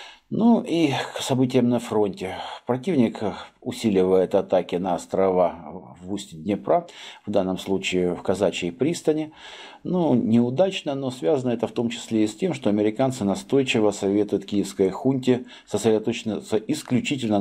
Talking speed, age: 135 wpm, 50-69